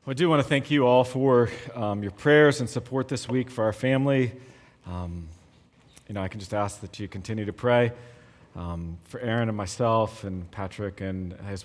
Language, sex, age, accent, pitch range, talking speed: English, male, 30-49, American, 100-145 Hz, 200 wpm